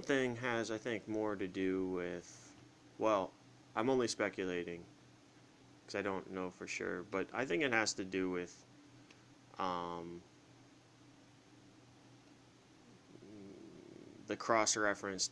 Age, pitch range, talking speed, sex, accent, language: 30-49, 85-95 Hz, 120 wpm, male, American, English